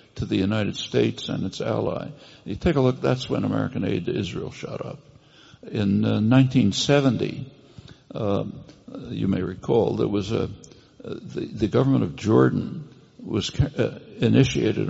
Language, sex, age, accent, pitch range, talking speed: English, male, 60-79, American, 110-140 Hz, 155 wpm